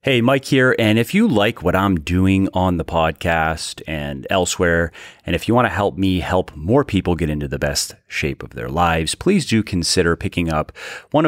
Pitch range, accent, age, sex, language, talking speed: 80-110 Hz, American, 30-49, male, English, 200 wpm